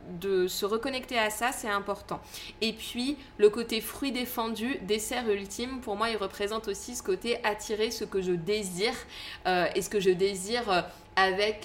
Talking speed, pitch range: 180 wpm, 190-230 Hz